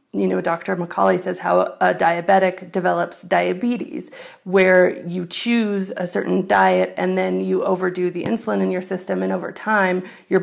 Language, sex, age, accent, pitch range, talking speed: English, female, 40-59, American, 170-195 Hz, 165 wpm